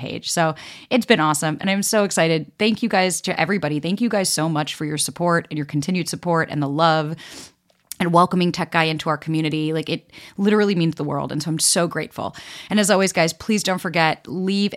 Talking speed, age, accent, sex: 225 wpm, 30-49, American, female